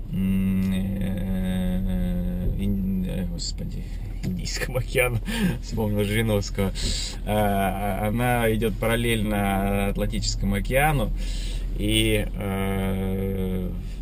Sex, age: male, 20-39